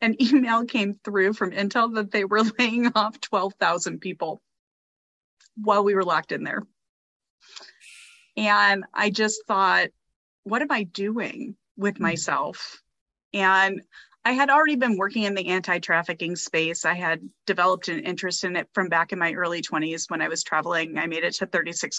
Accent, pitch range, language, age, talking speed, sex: American, 170-205 Hz, English, 30-49, 165 wpm, female